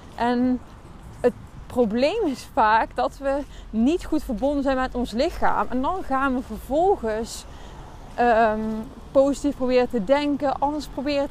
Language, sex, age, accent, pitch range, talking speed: Dutch, female, 20-39, Dutch, 230-285 Hz, 135 wpm